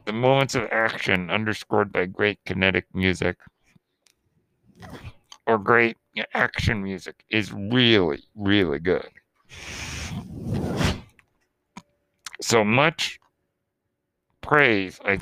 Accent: American